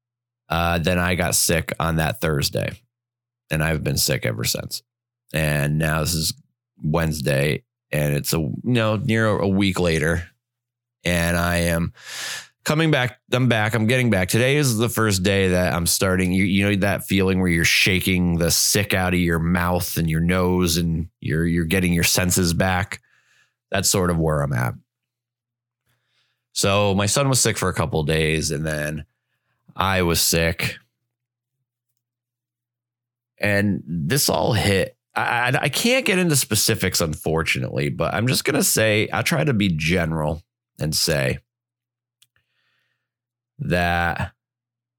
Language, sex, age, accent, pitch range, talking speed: English, male, 20-39, American, 85-120 Hz, 155 wpm